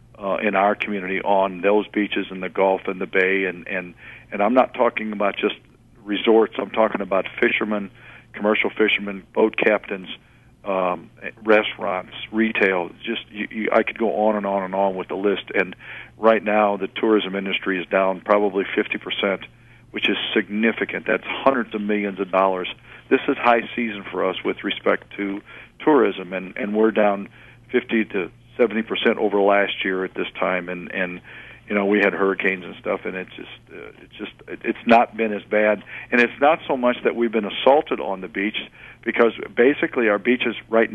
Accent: American